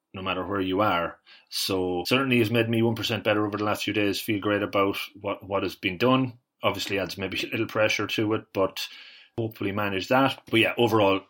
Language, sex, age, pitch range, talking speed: English, male, 30-49, 100-120 Hz, 210 wpm